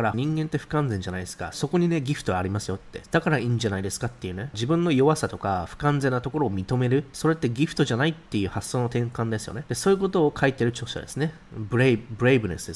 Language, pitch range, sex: Japanese, 110-150 Hz, male